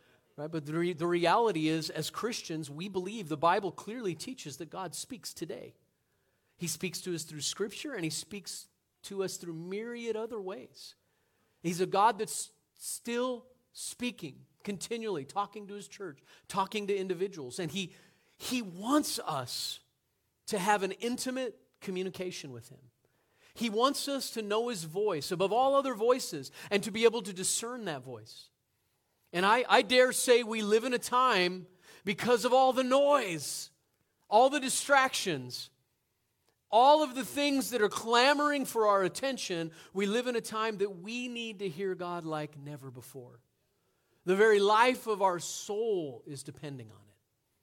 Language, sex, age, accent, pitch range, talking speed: English, male, 40-59, American, 150-230 Hz, 165 wpm